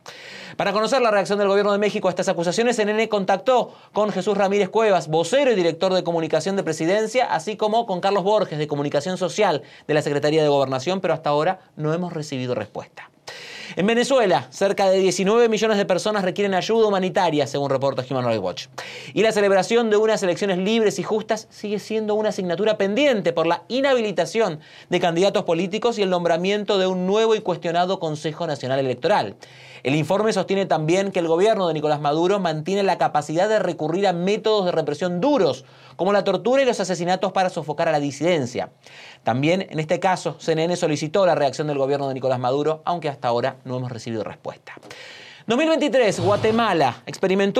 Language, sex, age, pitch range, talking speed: Spanish, male, 30-49, 160-215 Hz, 185 wpm